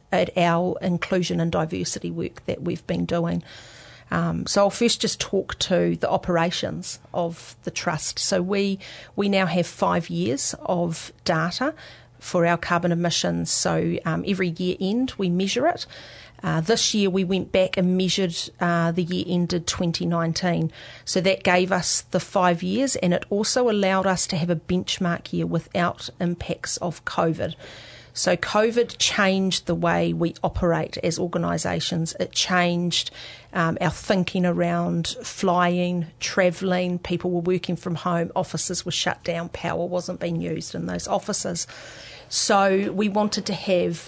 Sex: female